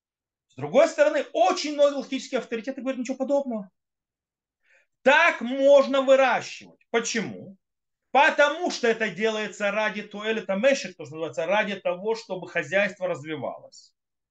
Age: 30-49